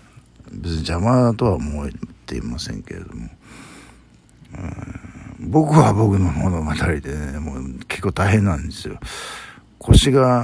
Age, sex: 60-79, male